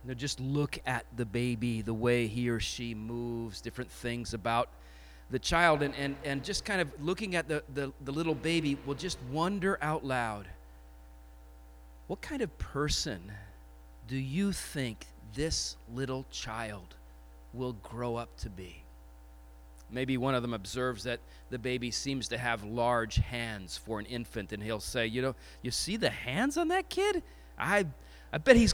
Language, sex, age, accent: English, male, 40-59, American